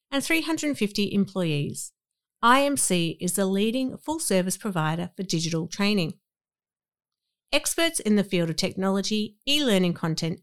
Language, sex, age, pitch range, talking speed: English, female, 50-69, 165-230 Hz, 120 wpm